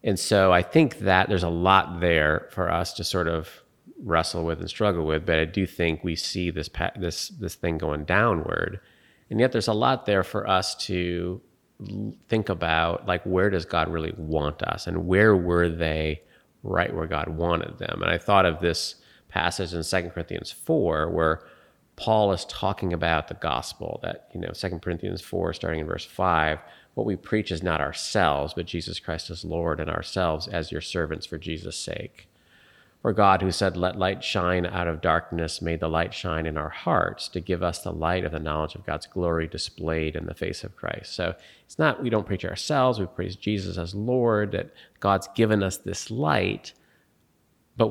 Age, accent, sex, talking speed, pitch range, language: 30-49, American, male, 195 wpm, 80-95 Hz, English